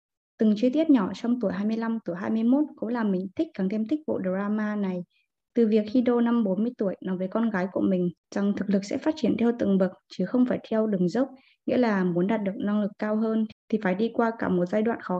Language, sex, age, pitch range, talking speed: Vietnamese, female, 20-39, 195-250 Hz, 255 wpm